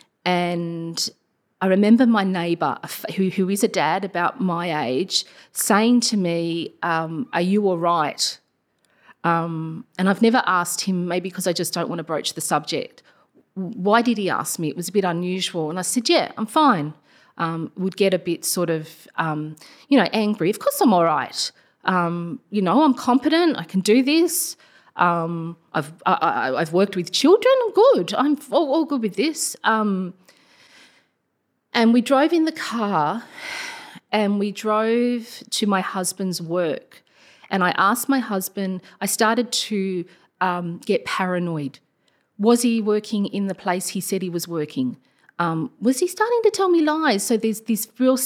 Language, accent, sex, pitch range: English, Australian, female, 175-240 Hz